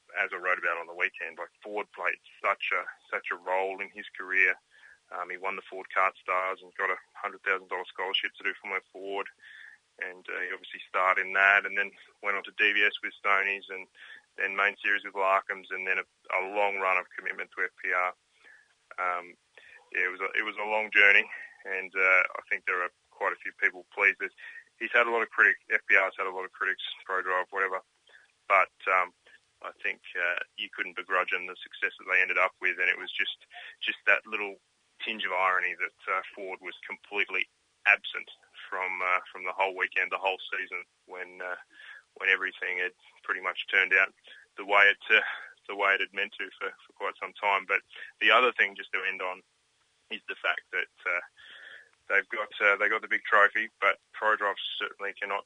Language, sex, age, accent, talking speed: English, male, 20-39, Australian, 210 wpm